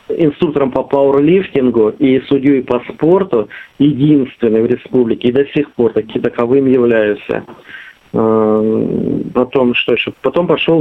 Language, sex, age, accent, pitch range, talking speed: Russian, male, 40-59, native, 125-150 Hz, 115 wpm